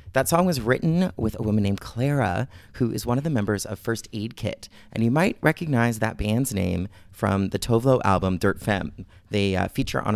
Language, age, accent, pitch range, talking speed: English, 30-49, American, 100-135 Hz, 215 wpm